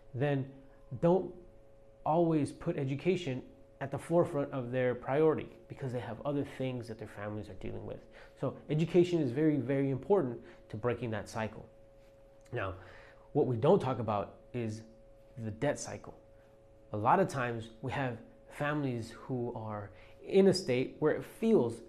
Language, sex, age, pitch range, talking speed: English, male, 30-49, 110-140 Hz, 155 wpm